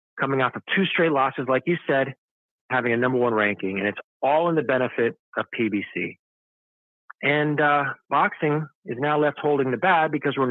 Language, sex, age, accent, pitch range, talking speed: English, male, 40-59, American, 120-150 Hz, 190 wpm